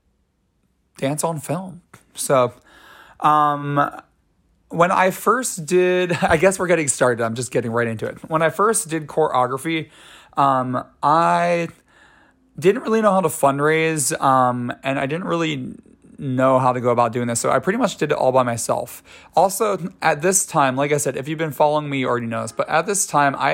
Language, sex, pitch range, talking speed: English, male, 125-155 Hz, 185 wpm